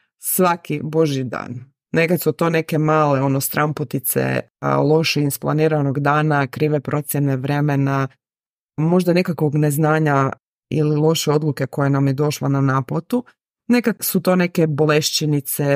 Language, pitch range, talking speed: Croatian, 140-170 Hz, 125 wpm